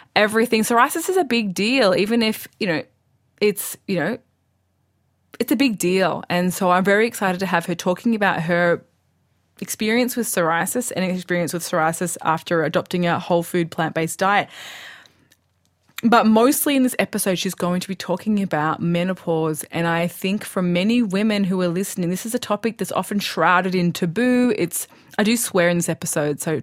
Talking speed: 180 wpm